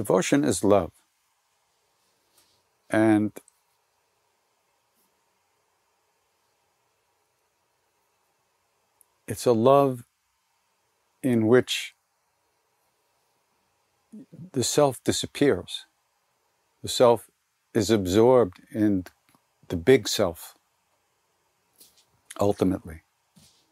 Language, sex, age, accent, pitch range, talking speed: English, male, 60-79, American, 100-120 Hz, 55 wpm